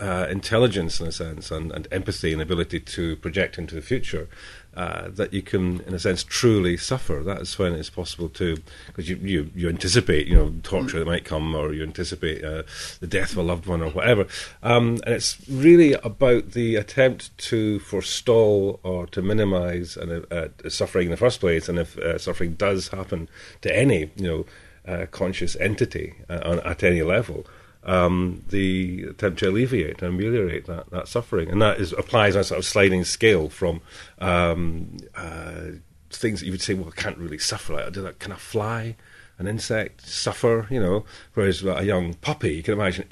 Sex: male